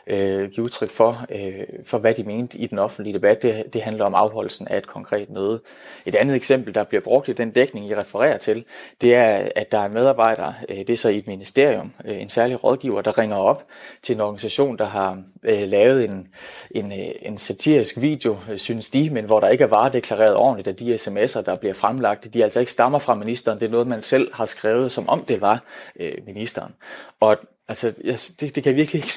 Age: 30-49